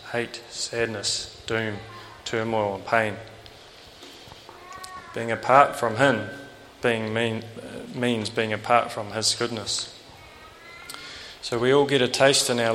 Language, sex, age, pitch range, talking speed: English, male, 20-39, 110-125 Hz, 120 wpm